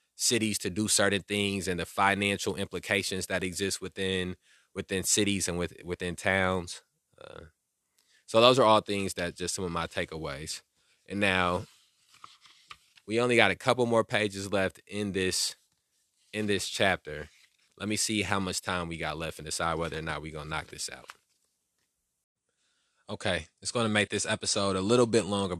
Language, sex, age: English, male, 20-39